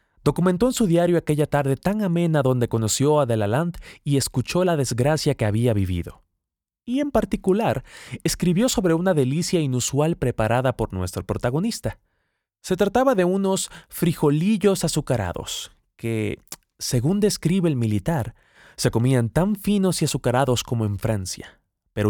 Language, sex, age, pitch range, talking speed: Spanish, male, 30-49, 115-175 Hz, 140 wpm